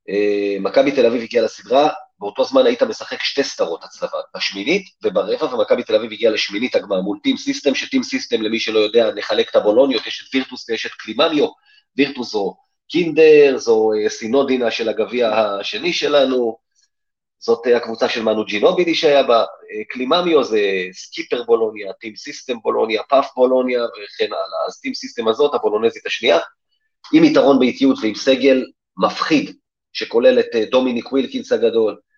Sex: male